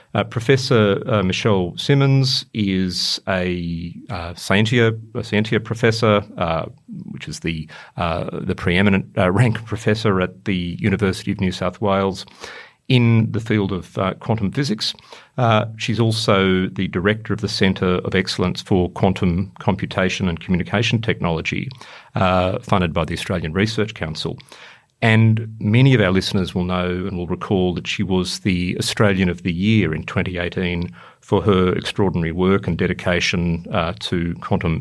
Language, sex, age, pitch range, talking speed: English, male, 40-59, 95-115 Hz, 145 wpm